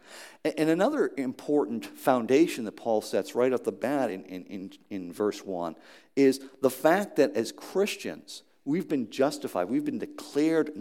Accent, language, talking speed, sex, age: American, English, 160 wpm, male, 50-69